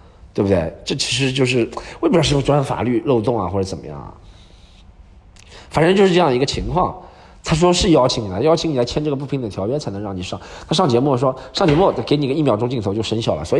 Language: Chinese